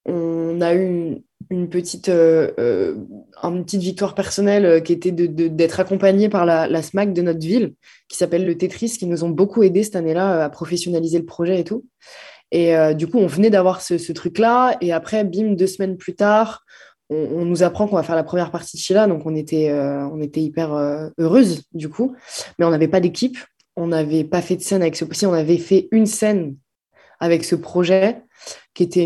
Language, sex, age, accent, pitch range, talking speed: French, female, 20-39, French, 160-195 Hz, 215 wpm